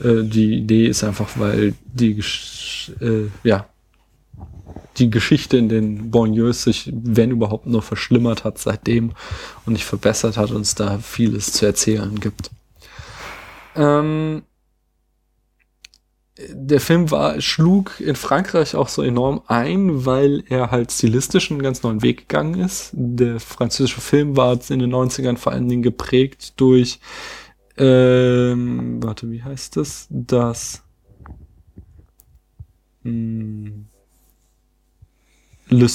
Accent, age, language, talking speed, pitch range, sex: German, 20-39, German, 115 wpm, 110-135 Hz, male